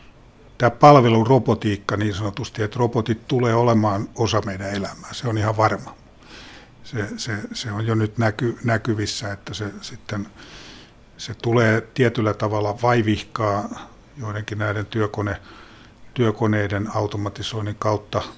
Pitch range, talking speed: 105-115 Hz, 120 wpm